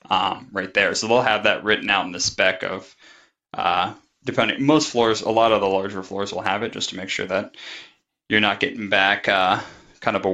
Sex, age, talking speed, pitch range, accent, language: male, 20-39, 225 wpm, 100-115 Hz, American, English